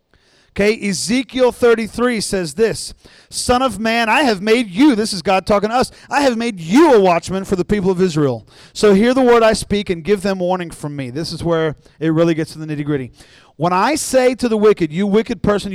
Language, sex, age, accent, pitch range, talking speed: English, male, 40-59, American, 170-230 Hz, 230 wpm